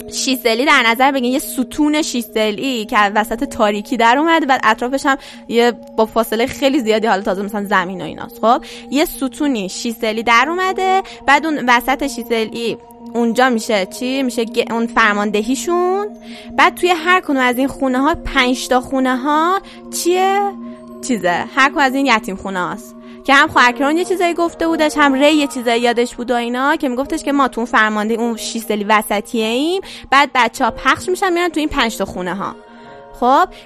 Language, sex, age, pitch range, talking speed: Persian, female, 10-29, 225-300 Hz, 180 wpm